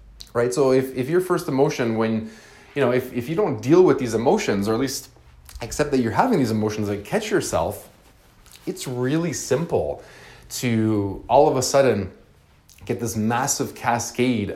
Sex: male